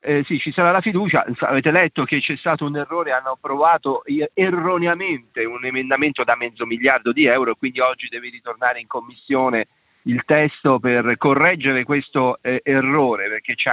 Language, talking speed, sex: Italian, 165 wpm, male